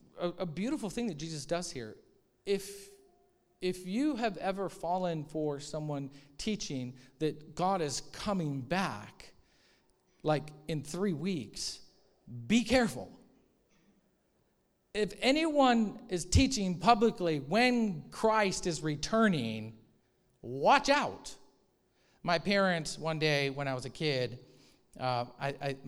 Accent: American